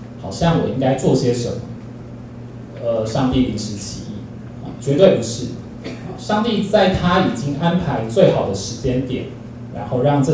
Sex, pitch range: male, 120-145 Hz